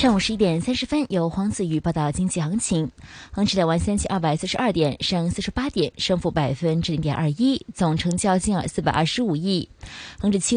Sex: female